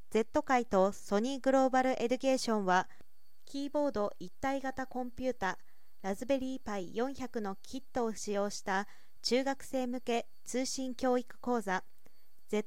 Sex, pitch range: female, 205-260 Hz